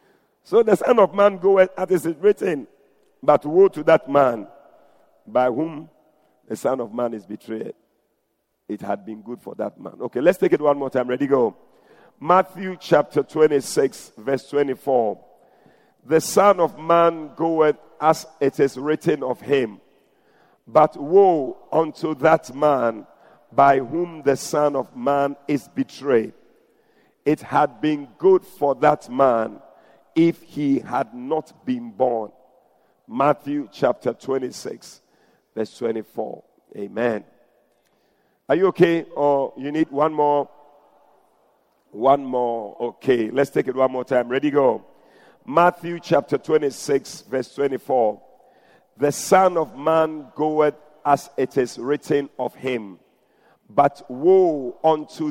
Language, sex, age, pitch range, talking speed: English, male, 50-69, 135-170 Hz, 135 wpm